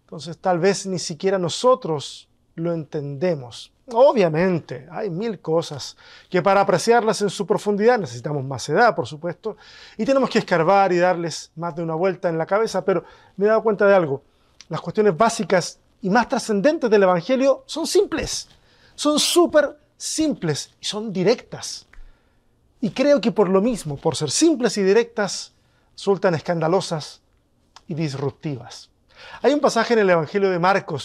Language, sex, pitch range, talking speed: Spanish, male, 165-225 Hz, 160 wpm